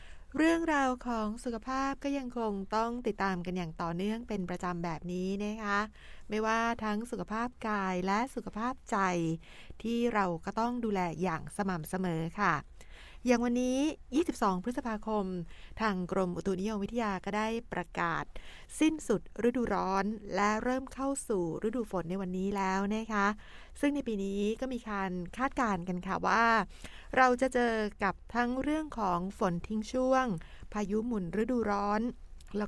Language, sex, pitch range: Thai, female, 190-235 Hz